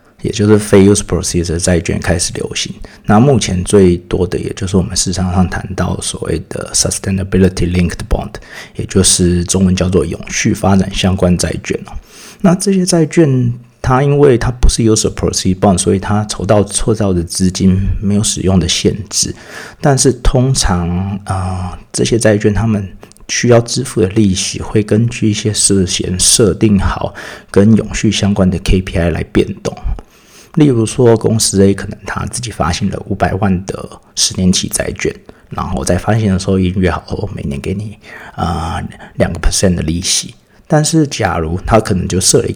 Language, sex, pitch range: Chinese, male, 90-110 Hz